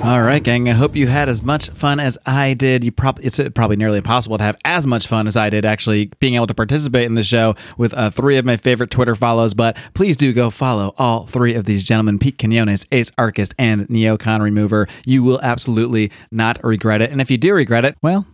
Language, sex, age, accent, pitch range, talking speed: English, male, 30-49, American, 115-140 Hz, 240 wpm